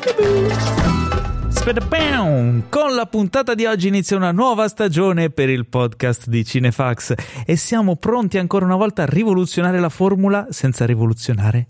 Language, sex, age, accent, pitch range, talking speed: Italian, male, 30-49, native, 135-210 Hz, 135 wpm